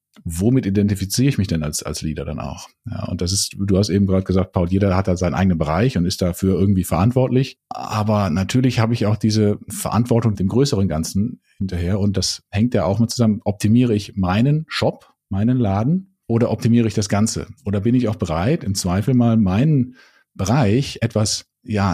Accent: German